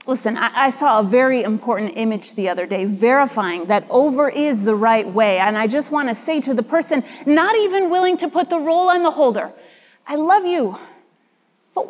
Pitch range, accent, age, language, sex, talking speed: 230-325 Hz, American, 30-49, English, female, 200 wpm